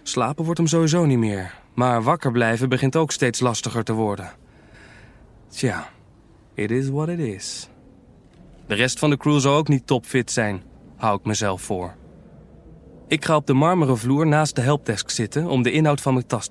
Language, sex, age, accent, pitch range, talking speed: Dutch, male, 20-39, Dutch, 120-150 Hz, 185 wpm